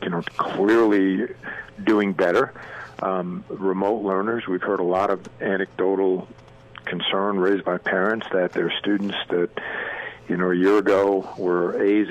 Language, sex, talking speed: English, male, 145 wpm